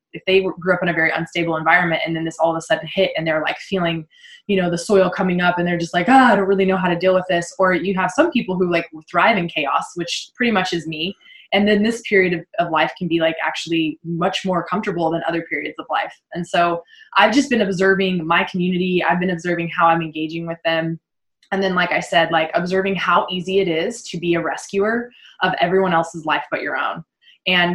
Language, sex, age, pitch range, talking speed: English, female, 20-39, 165-185 Hz, 245 wpm